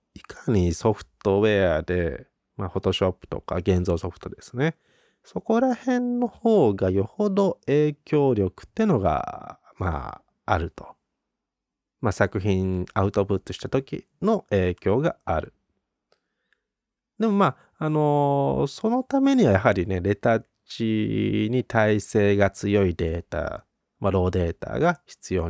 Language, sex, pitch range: Japanese, male, 95-150 Hz